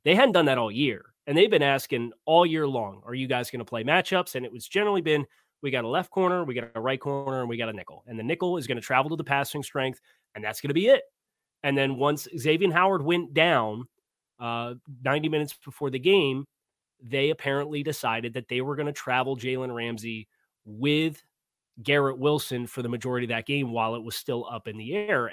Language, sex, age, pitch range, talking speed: English, male, 30-49, 120-145 Hz, 230 wpm